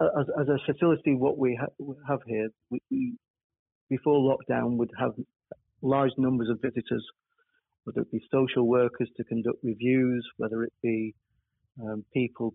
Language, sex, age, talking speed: English, male, 40-59, 155 wpm